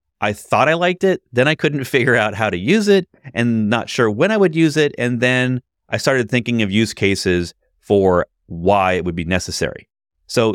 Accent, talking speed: American, 210 wpm